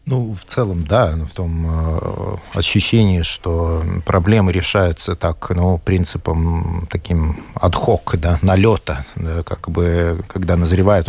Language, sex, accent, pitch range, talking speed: Russian, male, native, 90-120 Hz, 120 wpm